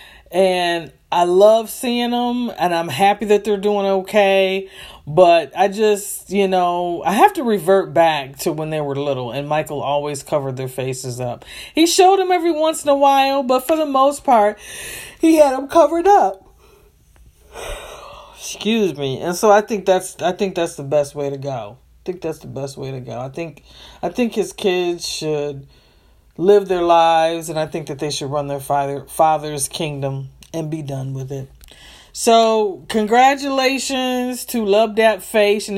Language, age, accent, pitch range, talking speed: English, 40-59, American, 160-225 Hz, 180 wpm